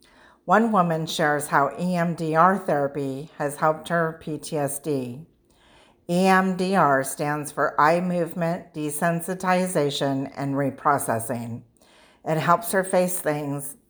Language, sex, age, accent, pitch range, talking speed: English, female, 50-69, American, 140-175 Hz, 100 wpm